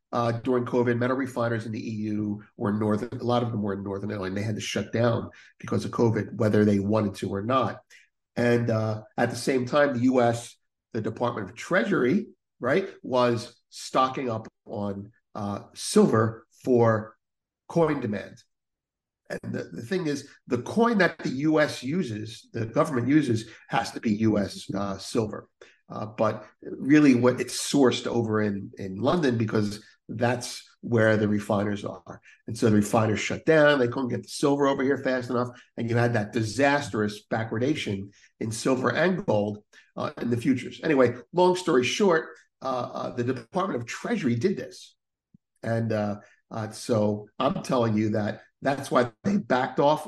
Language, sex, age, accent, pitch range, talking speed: English, male, 50-69, American, 105-130 Hz, 175 wpm